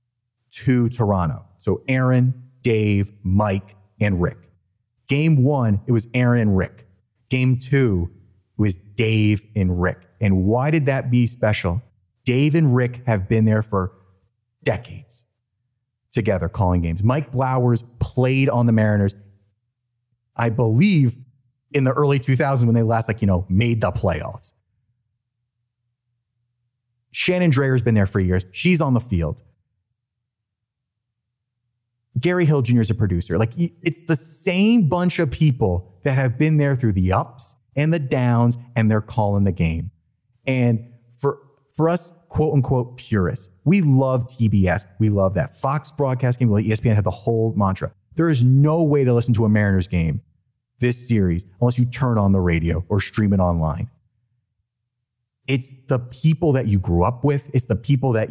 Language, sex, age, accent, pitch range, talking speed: English, male, 30-49, American, 105-130 Hz, 155 wpm